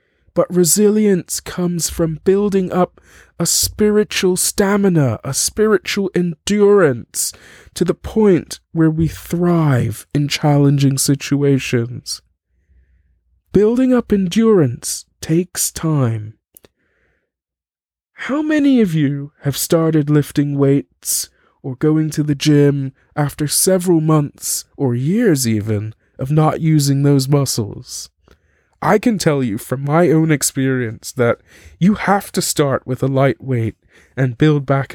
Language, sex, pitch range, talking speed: English, male, 130-180 Hz, 120 wpm